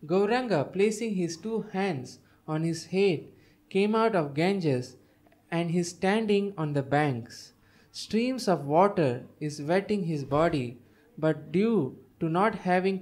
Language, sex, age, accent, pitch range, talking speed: English, male, 20-39, Indian, 140-185 Hz, 140 wpm